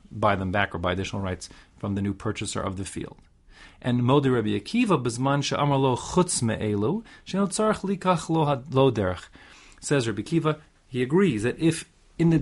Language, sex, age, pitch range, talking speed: English, male, 30-49, 100-140 Hz, 130 wpm